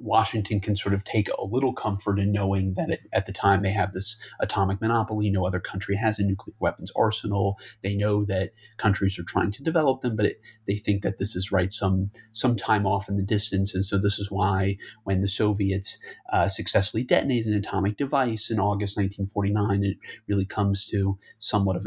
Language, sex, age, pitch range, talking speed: English, male, 30-49, 100-110 Hz, 205 wpm